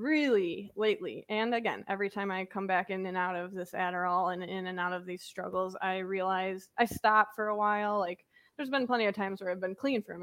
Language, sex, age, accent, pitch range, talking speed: English, female, 20-39, American, 185-220 Hz, 235 wpm